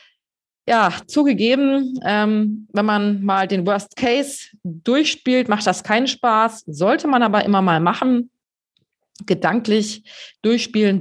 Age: 30-49